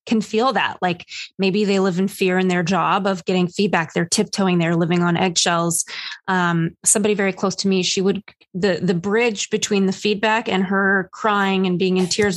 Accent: American